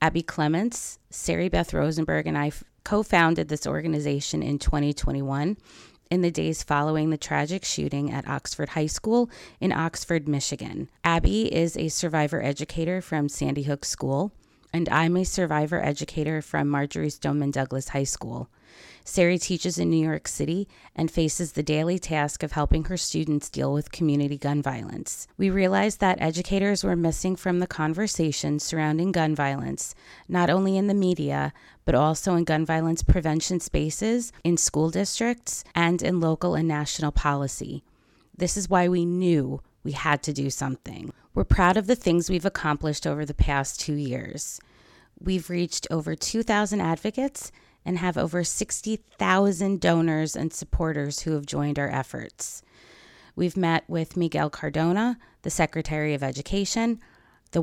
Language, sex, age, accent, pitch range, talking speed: English, female, 30-49, American, 145-180 Hz, 155 wpm